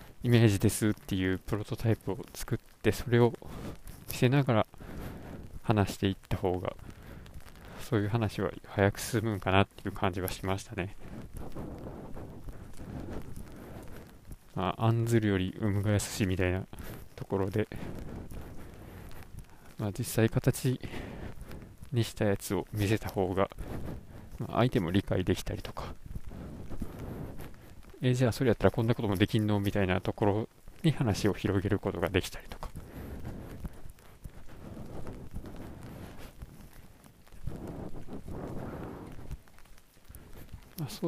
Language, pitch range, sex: Japanese, 95-115 Hz, male